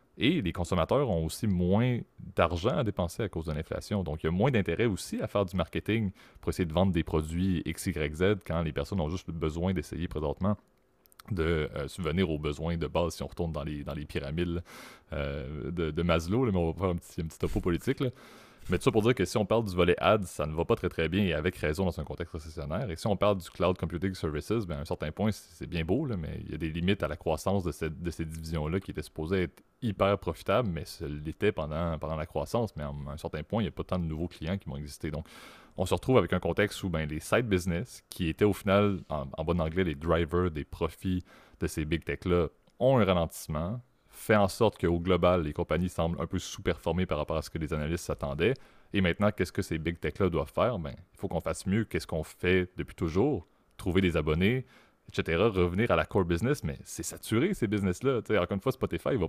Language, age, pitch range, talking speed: French, 30-49, 80-100 Hz, 250 wpm